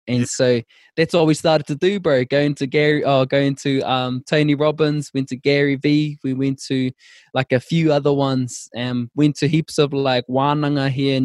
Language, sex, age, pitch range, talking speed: English, male, 20-39, 130-155 Hz, 210 wpm